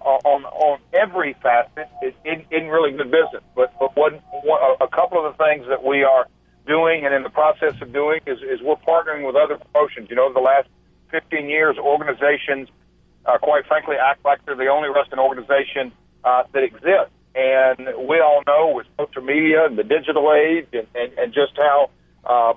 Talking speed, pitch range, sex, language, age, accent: 195 wpm, 135-155 Hz, male, English, 50-69, American